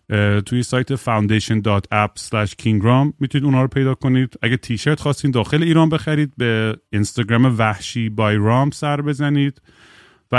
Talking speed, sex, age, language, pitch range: 140 wpm, male, 30-49, Persian, 105-130 Hz